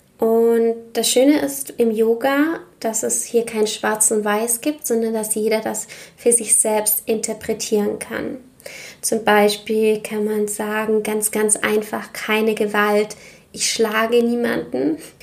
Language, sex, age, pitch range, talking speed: German, female, 20-39, 210-230 Hz, 140 wpm